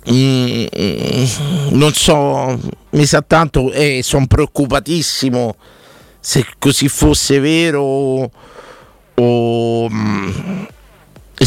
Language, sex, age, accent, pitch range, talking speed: Italian, male, 50-69, native, 115-145 Hz, 95 wpm